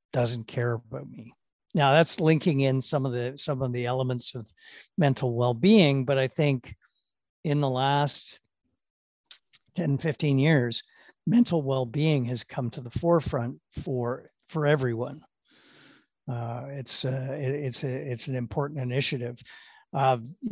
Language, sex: English, male